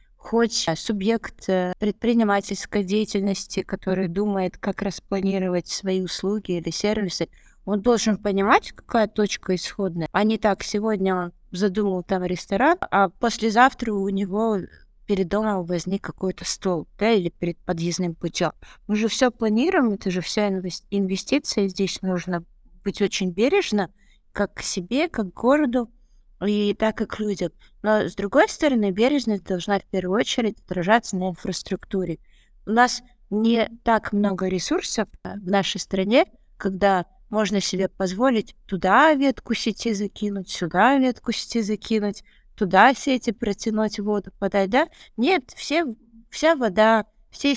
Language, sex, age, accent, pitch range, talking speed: Russian, female, 30-49, native, 190-230 Hz, 135 wpm